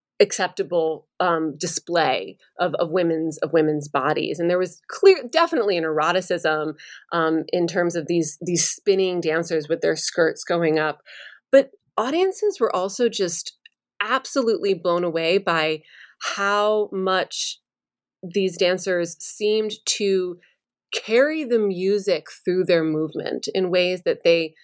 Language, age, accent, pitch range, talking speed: English, 30-49, American, 170-225 Hz, 130 wpm